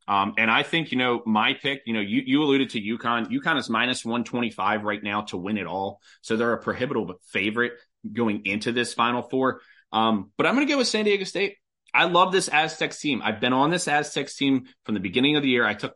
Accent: American